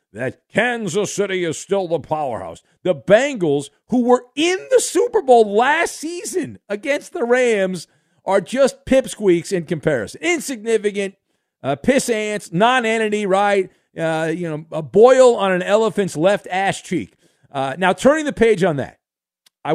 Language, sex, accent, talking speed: English, male, American, 150 wpm